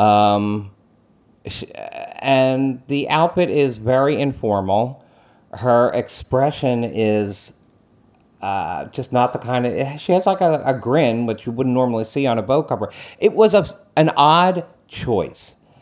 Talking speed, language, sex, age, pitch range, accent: 135 wpm, English, male, 40-59, 100-130 Hz, American